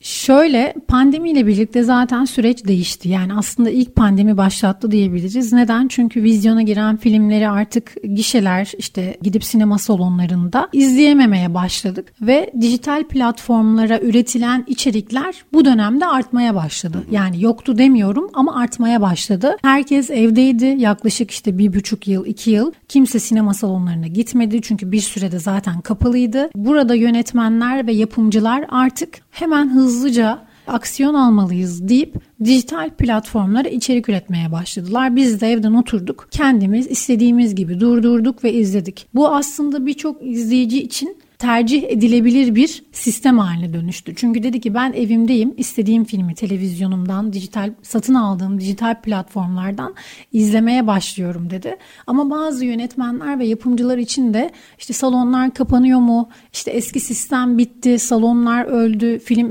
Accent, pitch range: native, 210-255 Hz